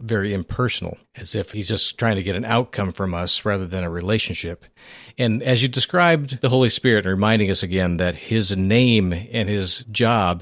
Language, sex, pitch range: English, male, 100-130 Hz